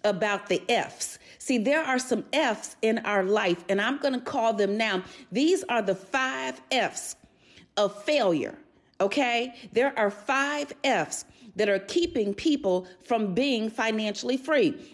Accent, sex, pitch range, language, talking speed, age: American, female, 200-265 Hz, English, 150 wpm, 40-59